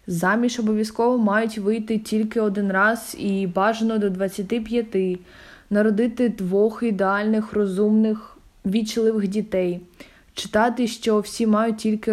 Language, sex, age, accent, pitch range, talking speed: Ukrainian, female, 20-39, native, 210-230 Hz, 110 wpm